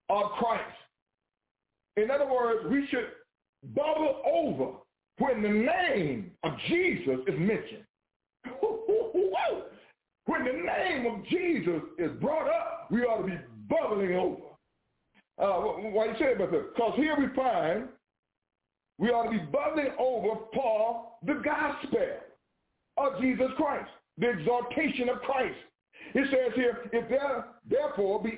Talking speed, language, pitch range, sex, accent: 135 wpm, English, 225-320 Hz, male, American